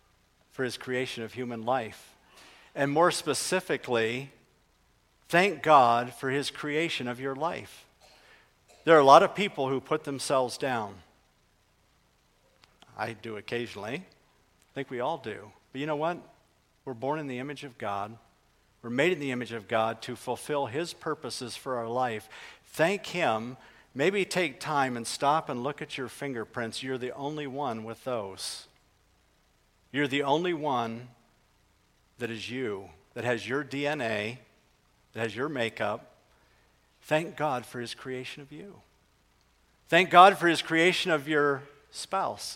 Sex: male